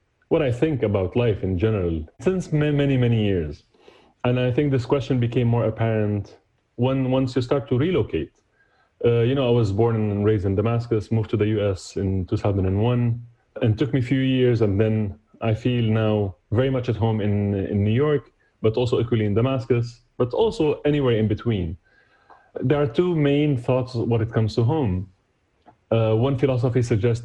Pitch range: 105-130 Hz